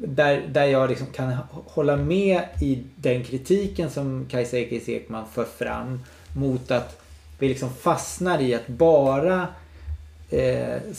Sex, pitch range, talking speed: male, 120-150 Hz, 130 wpm